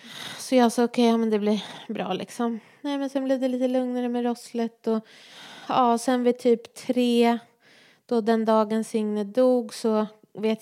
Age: 20-39